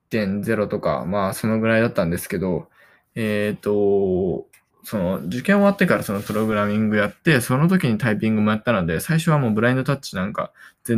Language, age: Japanese, 20-39